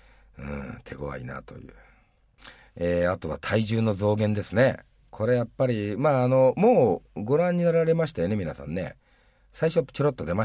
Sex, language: male, Japanese